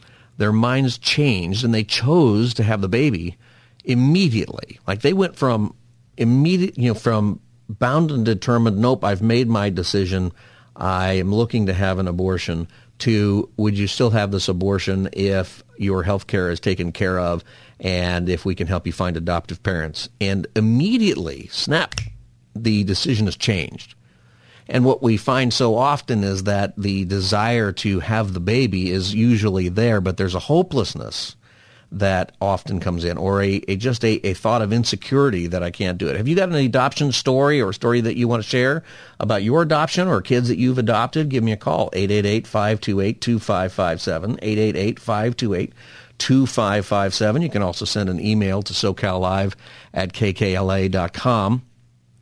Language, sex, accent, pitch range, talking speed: English, male, American, 95-120 Hz, 165 wpm